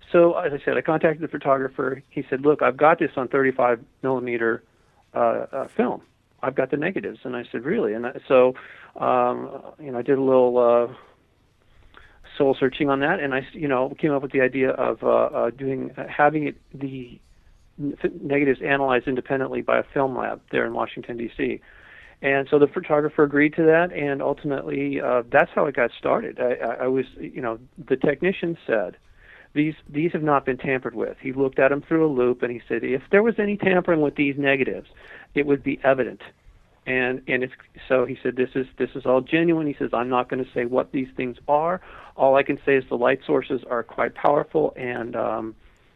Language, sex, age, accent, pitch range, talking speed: English, male, 40-59, American, 125-150 Hz, 210 wpm